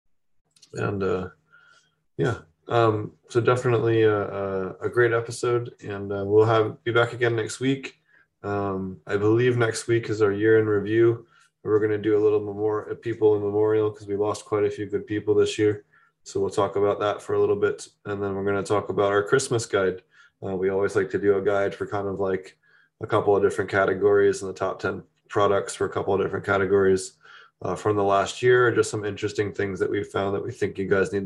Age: 20-39